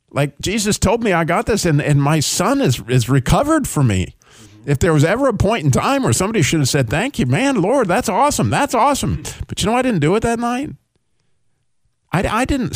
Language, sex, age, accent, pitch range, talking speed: English, male, 50-69, American, 125-170 Hz, 230 wpm